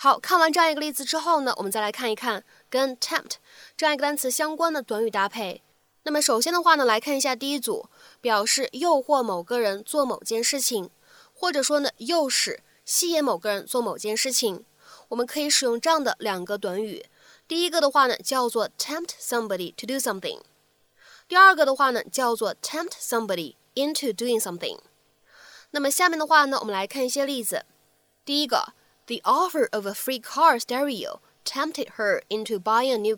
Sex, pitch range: female, 220-300 Hz